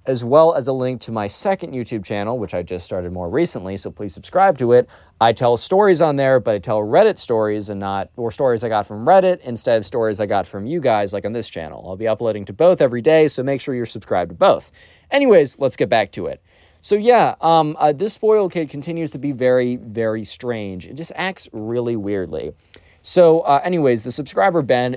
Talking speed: 230 wpm